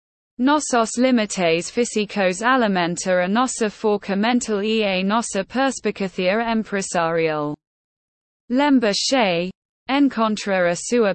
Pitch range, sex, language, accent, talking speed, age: 180-235 Hz, female, English, British, 95 wpm, 20-39